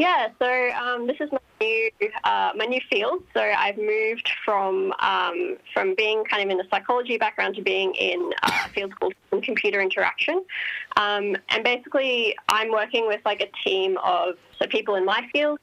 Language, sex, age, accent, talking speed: English, female, 20-39, Australian, 185 wpm